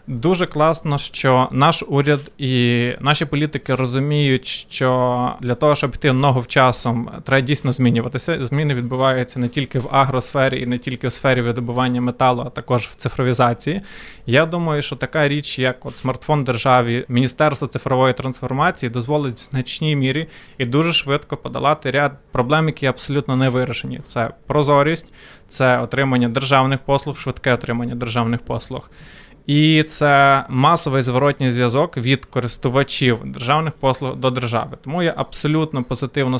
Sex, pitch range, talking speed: male, 125-145 Hz, 145 wpm